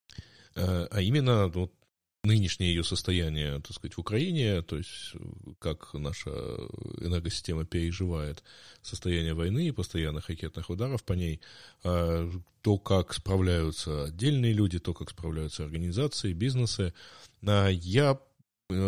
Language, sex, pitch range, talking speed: Russian, male, 85-105 Hz, 100 wpm